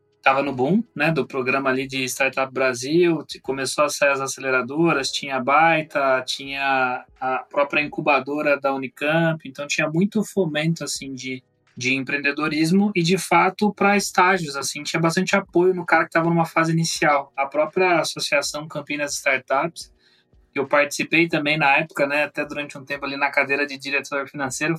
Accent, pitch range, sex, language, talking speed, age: Brazilian, 140-170 Hz, male, Portuguese, 165 wpm, 20-39